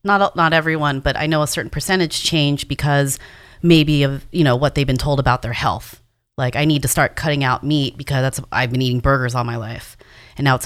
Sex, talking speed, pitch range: female, 235 wpm, 130-170 Hz